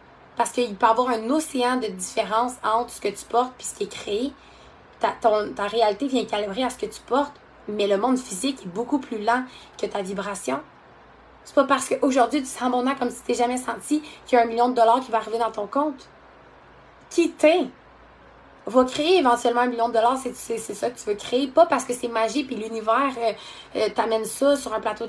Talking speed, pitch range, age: 230 wpm, 225-280 Hz, 20-39